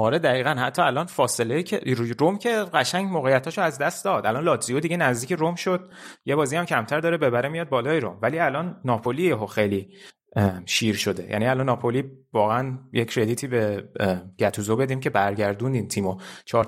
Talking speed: 175 wpm